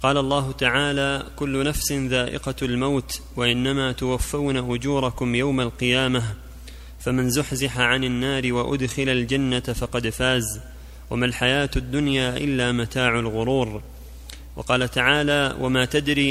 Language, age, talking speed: Arabic, 20-39, 110 wpm